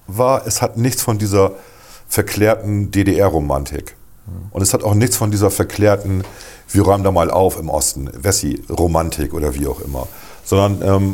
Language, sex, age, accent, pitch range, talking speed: German, male, 40-59, German, 85-105 Hz, 160 wpm